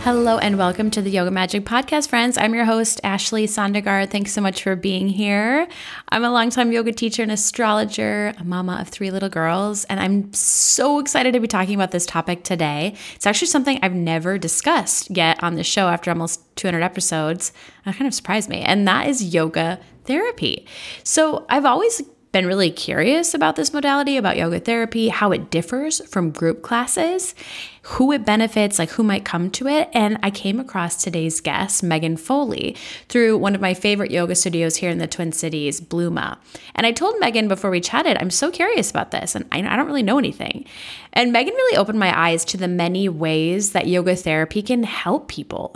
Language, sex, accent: English, female, American